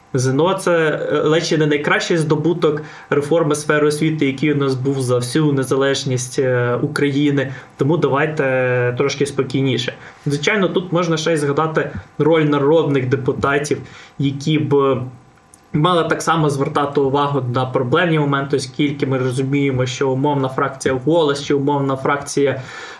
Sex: male